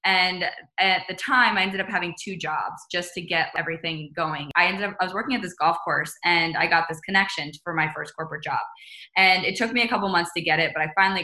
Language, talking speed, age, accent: English, 255 wpm, 10-29, American